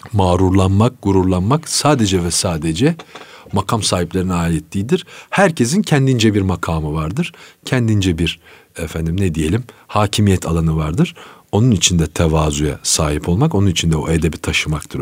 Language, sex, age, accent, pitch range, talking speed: Turkish, male, 40-59, native, 85-110 Hz, 130 wpm